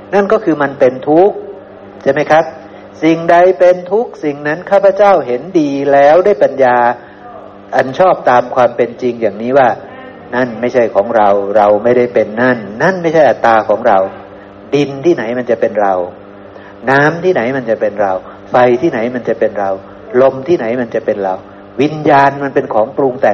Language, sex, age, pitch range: Thai, male, 60-79, 105-150 Hz